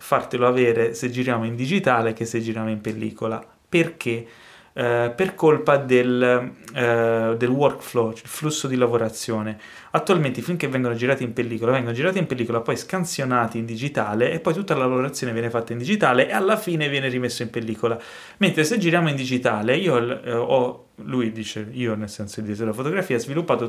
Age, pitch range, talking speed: 30-49, 115-135 Hz, 190 wpm